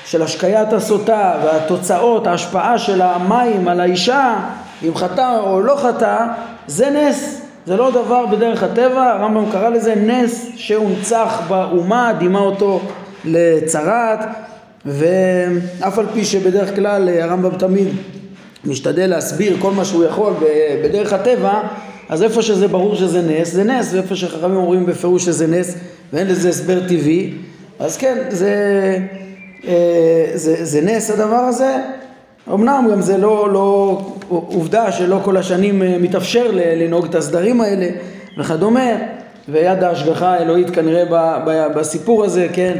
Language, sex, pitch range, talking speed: Hebrew, male, 170-215 Hz, 130 wpm